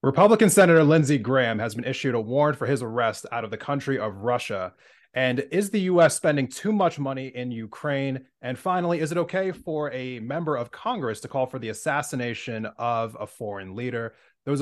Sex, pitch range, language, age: male, 115-150 Hz, English, 30-49